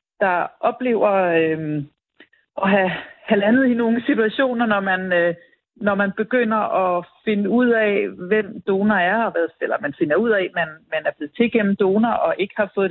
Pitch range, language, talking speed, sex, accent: 185-225 Hz, Danish, 195 wpm, female, native